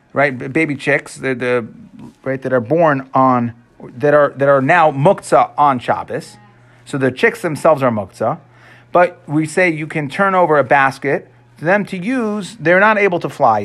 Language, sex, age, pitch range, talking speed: English, male, 30-49, 130-180 Hz, 185 wpm